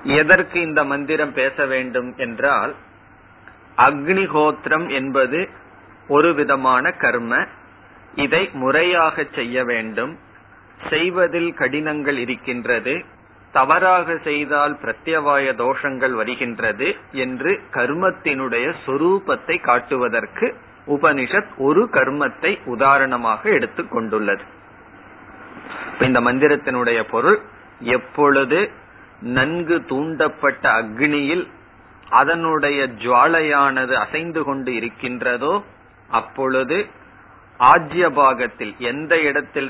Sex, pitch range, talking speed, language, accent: male, 120-150 Hz, 65 wpm, Tamil, native